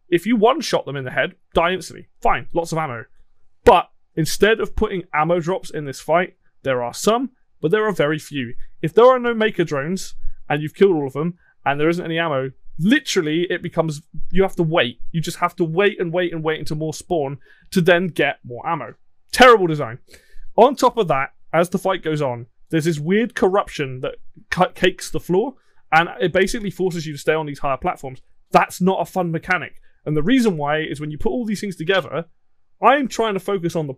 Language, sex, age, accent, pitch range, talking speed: English, male, 20-39, British, 150-190 Hz, 220 wpm